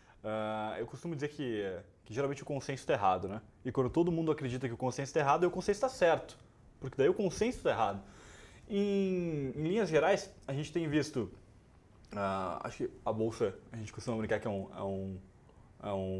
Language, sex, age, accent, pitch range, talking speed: Portuguese, male, 20-39, Brazilian, 105-130 Hz, 190 wpm